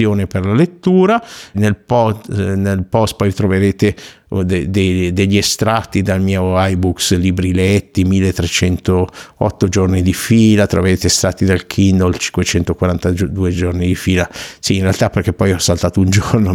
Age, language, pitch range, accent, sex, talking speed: 50-69, Italian, 95-110 Hz, native, male, 140 wpm